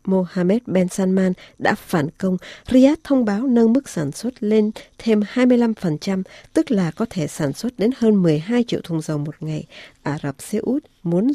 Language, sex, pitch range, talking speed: Vietnamese, female, 165-215 Hz, 185 wpm